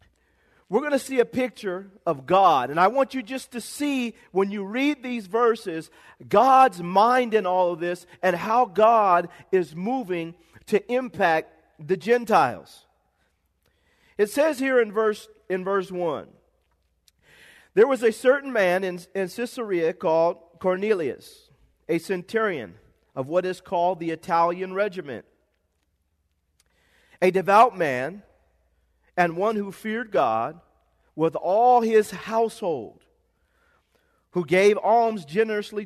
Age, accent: 40-59, American